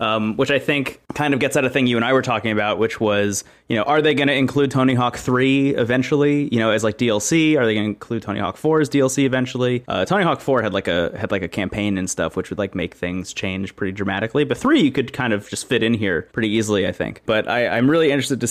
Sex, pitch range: male, 105-135 Hz